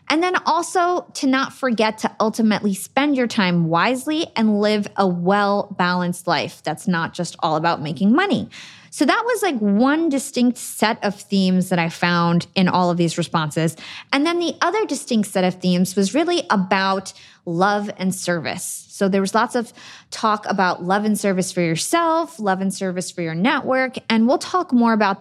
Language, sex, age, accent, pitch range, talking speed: English, female, 20-39, American, 180-245 Hz, 185 wpm